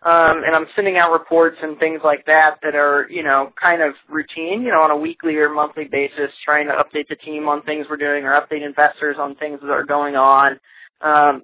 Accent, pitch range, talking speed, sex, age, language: American, 145-170 Hz, 230 wpm, male, 20-39, English